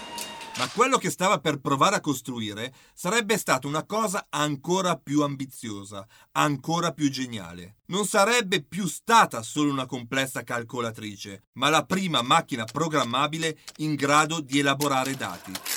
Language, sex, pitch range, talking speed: Italian, male, 120-185 Hz, 135 wpm